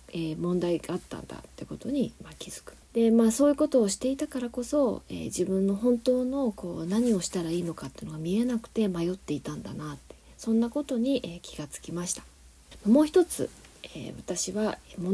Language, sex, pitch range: Japanese, female, 170-235 Hz